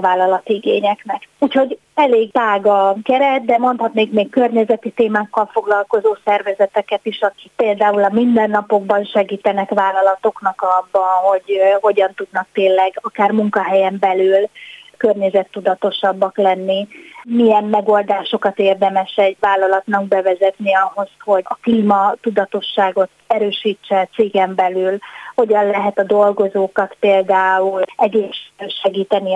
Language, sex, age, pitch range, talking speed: Hungarian, female, 20-39, 195-220 Hz, 105 wpm